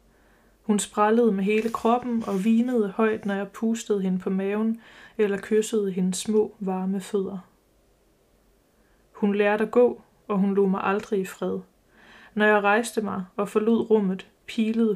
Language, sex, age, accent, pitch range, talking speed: Danish, female, 20-39, native, 195-220 Hz, 155 wpm